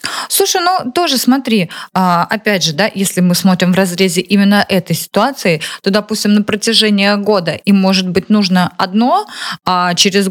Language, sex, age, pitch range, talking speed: Russian, female, 20-39, 180-225 Hz, 155 wpm